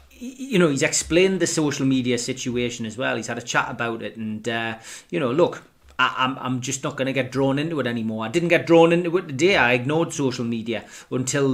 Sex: male